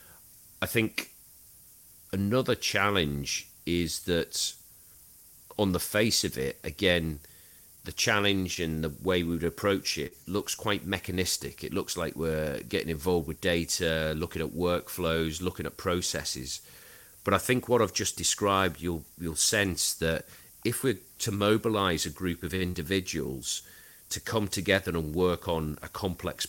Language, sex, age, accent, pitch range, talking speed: English, male, 40-59, British, 80-100 Hz, 145 wpm